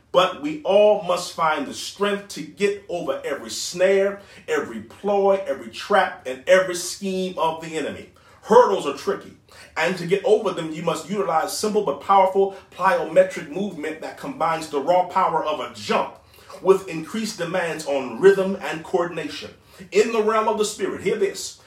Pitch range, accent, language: 155-200 Hz, American, English